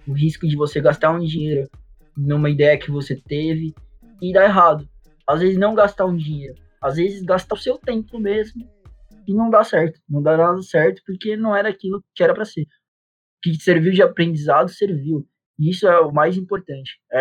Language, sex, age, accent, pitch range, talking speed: Portuguese, male, 20-39, Brazilian, 155-195 Hz, 195 wpm